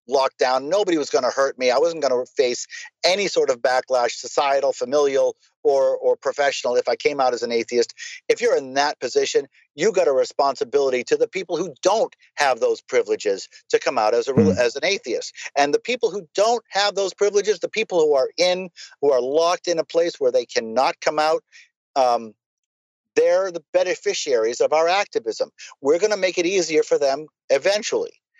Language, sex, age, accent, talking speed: English, male, 50-69, American, 200 wpm